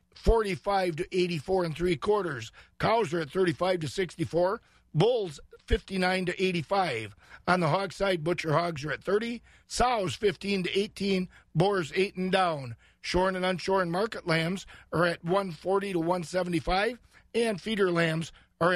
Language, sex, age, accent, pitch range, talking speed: English, male, 50-69, American, 165-190 Hz, 150 wpm